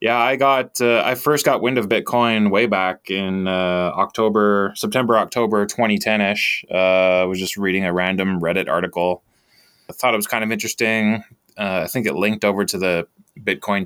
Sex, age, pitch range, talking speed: male, 20-39, 90-115 Hz, 185 wpm